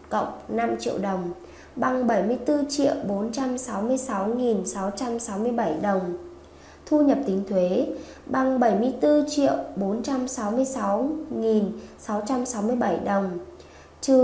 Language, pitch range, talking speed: Vietnamese, 210-265 Hz, 65 wpm